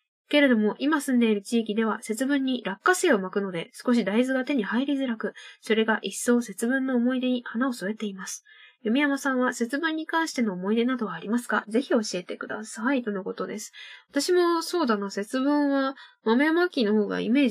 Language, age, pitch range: Japanese, 10-29, 210-285 Hz